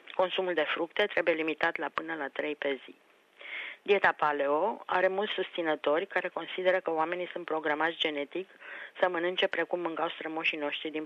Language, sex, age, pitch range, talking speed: Romanian, female, 30-49, 155-185 Hz, 165 wpm